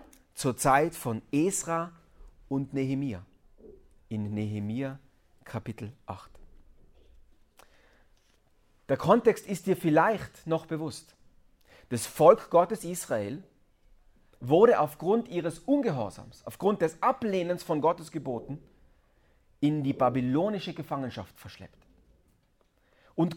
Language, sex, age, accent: German, male, 40-59, German